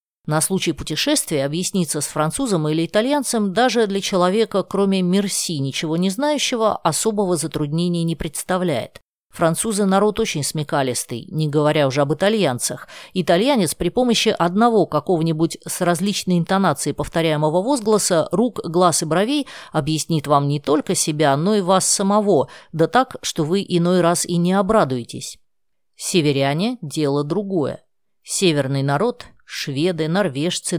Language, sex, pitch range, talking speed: Russian, female, 155-205 Hz, 135 wpm